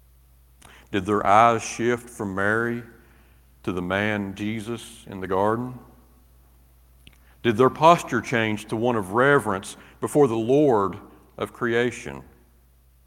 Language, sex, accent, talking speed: English, male, American, 120 wpm